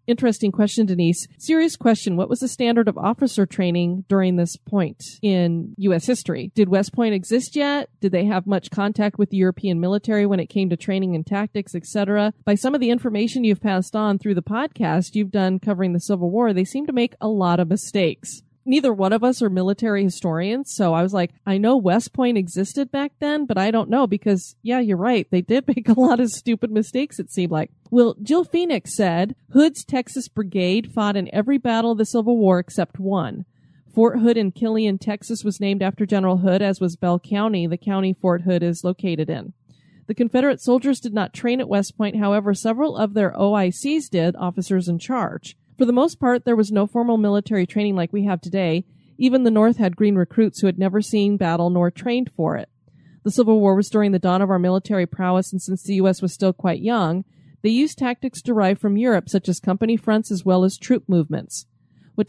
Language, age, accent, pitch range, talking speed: English, 30-49, American, 185-235 Hz, 215 wpm